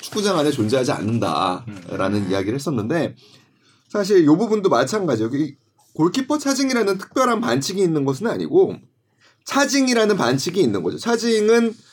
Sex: male